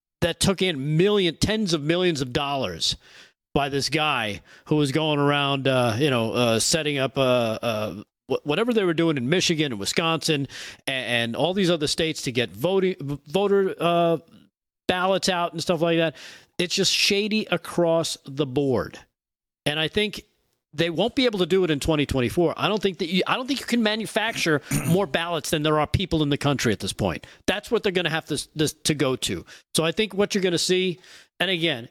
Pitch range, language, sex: 145-190 Hz, English, male